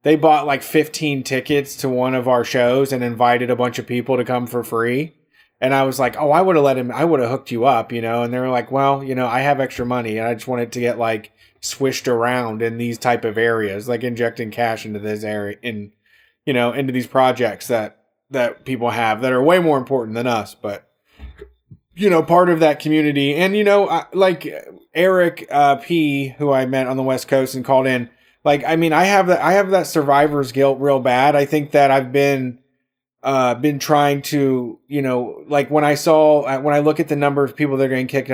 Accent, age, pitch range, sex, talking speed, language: American, 20-39, 125-145 Hz, male, 235 wpm, English